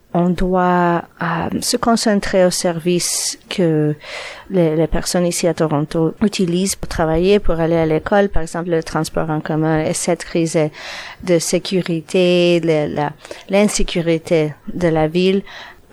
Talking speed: 145 wpm